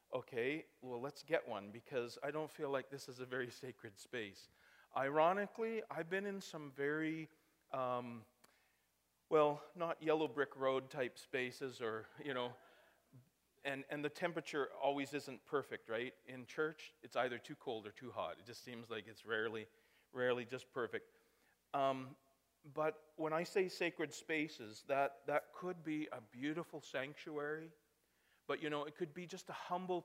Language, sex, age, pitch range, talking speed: English, male, 40-59, 125-155 Hz, 165 wpm